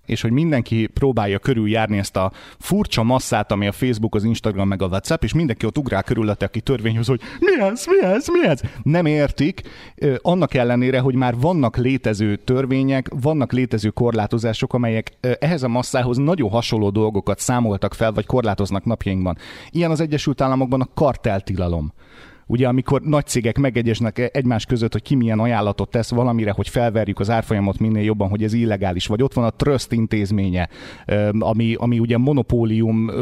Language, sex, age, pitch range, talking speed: Hungarian, male, 30-49, 110-130 Hz, 170 wpm